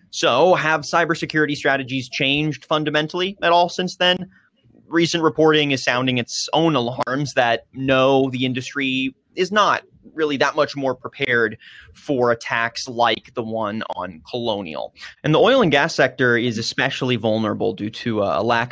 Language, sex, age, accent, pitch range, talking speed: English, male, 30-49, American, 115-150 Hz, 155 wpm